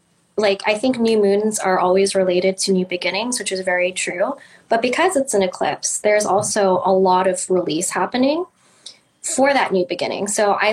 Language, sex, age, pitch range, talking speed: English, female, 10-29, 190-230 Hz, 185 wpm